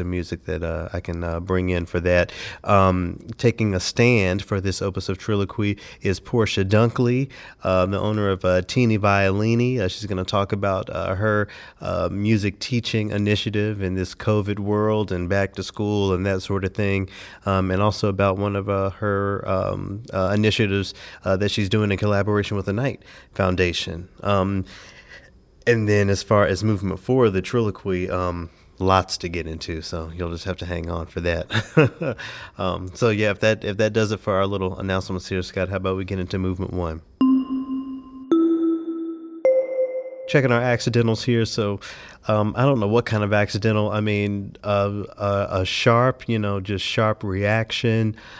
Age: 30-49